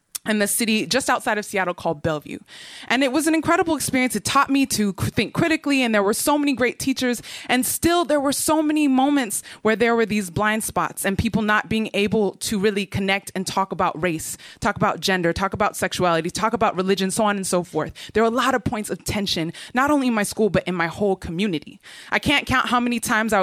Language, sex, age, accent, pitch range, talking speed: English, female, 20-39, American, 185-250 Hz, 240 wpm